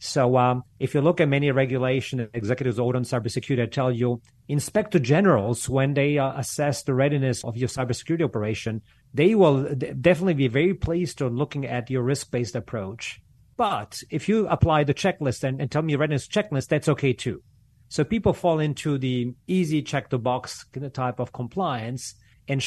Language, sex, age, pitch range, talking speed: English, male, 40-59, 120-145 Hz, 180 wpm